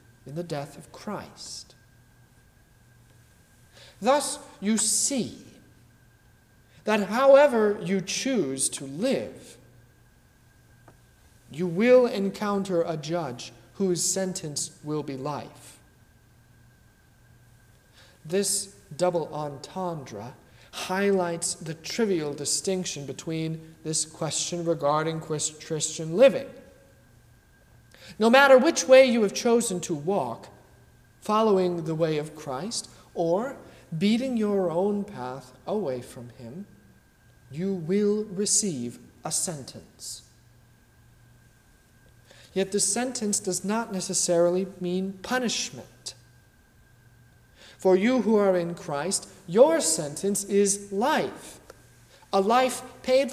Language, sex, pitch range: English, male, 125-200 Hz